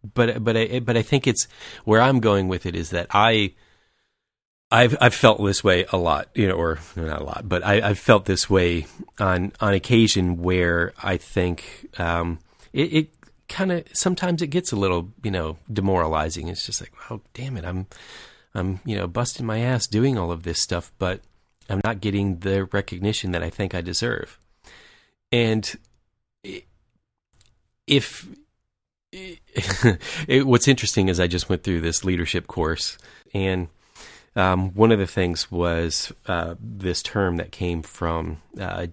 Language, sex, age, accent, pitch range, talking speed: English, male, 40-59, American, 85-110 Hz, 165 wpm